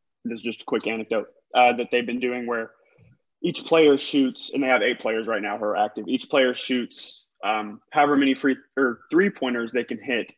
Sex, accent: male, American